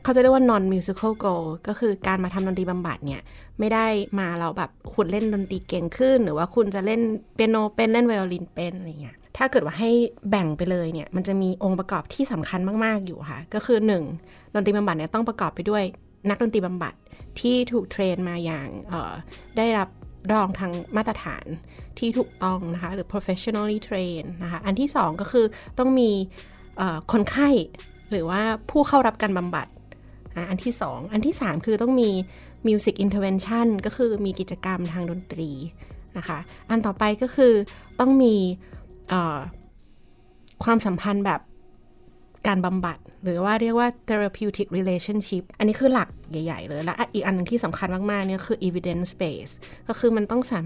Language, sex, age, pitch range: Thai, female, 20-39, 180-225 Hz